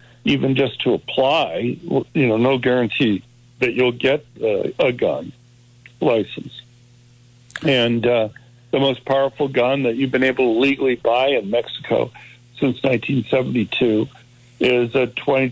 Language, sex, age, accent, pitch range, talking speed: English, male, 60-79, American, 120-130 Hz, 145 wpm